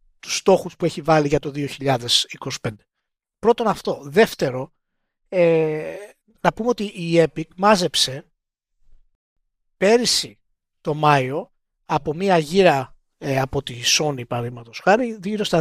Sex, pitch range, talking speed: male, 135-175 Hz, 125 wpm